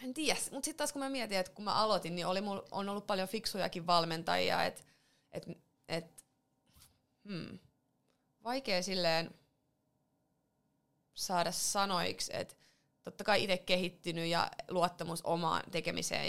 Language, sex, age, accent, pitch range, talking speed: Finnish, female, 30-49, native, 160-190 Hz, 135 wpm